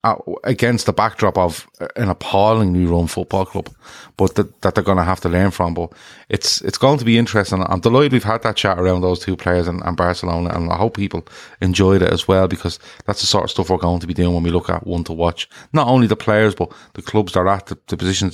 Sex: male